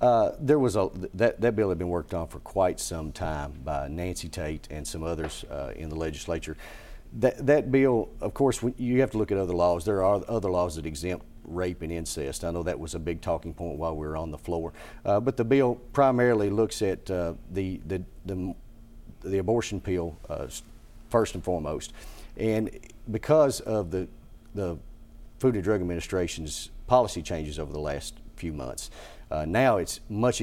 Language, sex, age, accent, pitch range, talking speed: English, male, 40-59, American, 85-110 Hz, 195 wpm